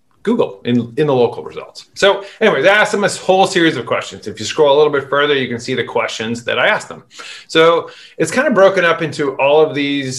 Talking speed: 245 wpm